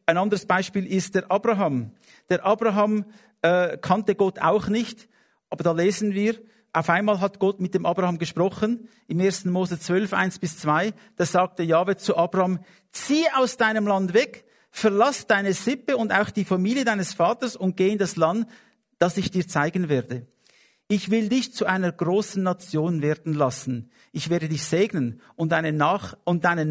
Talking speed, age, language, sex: 175 wpm, 50-69, English, male